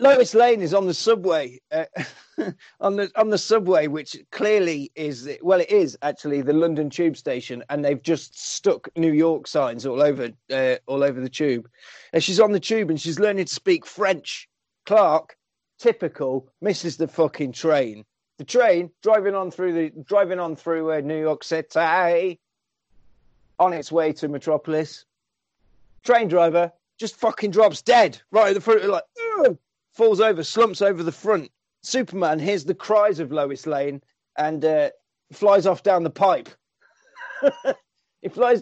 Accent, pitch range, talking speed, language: British, 150-200 Hz, 165 wpm, English